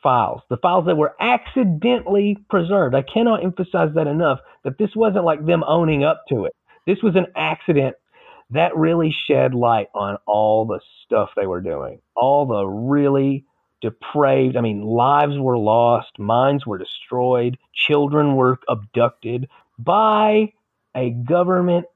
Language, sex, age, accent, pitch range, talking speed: English, male, 40-59, American, 120-165 Hz, 150 wpm